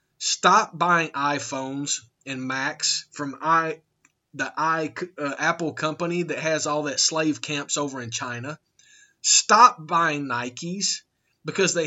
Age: 30-49